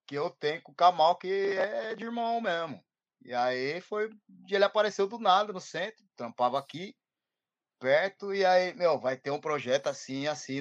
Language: Portuguese